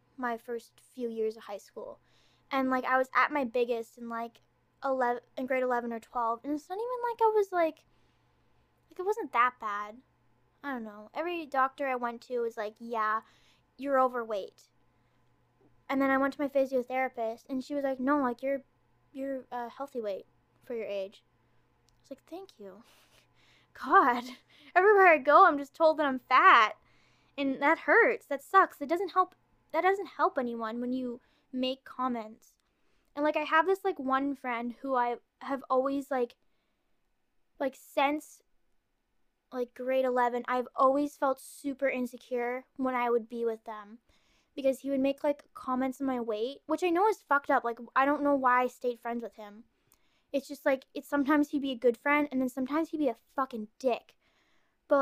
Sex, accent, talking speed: female, American, 190 wpm